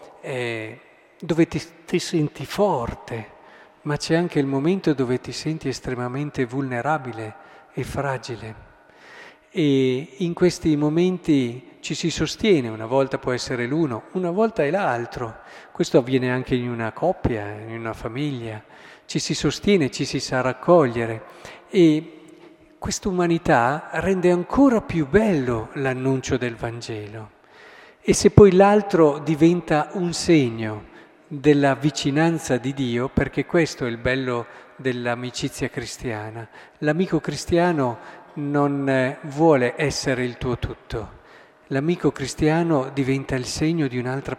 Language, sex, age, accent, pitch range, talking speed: Italian, male, 40-59, native, 125-160 Hz, 125 wpm